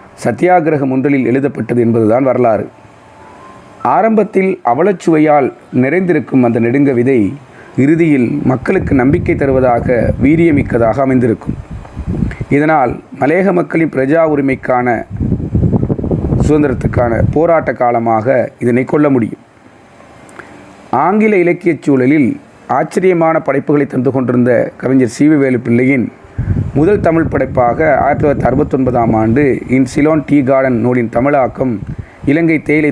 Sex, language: male, Tamil